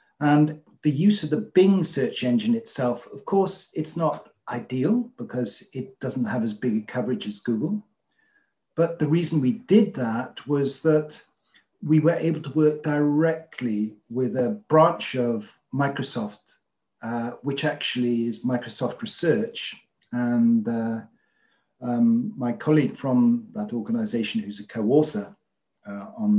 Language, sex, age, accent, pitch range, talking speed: English, male, 50-69, British, 125-205 Hz, 140 wpm